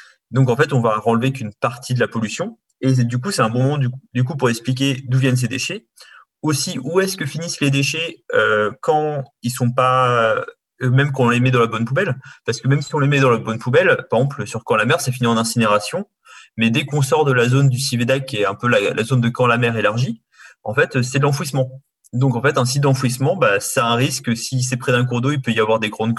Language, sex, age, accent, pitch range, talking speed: French, male, 30-49, French, 120-140 Hz, 270 wpm